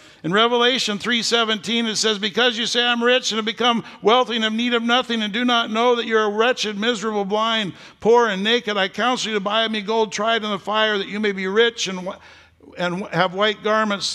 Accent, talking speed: American, 240 wpm